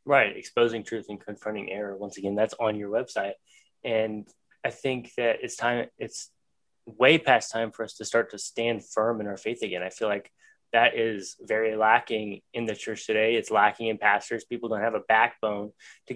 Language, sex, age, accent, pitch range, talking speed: English, male, 20-39, American, 110-125 Hz, 200 wpm